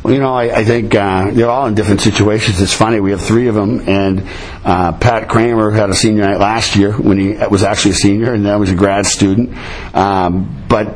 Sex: male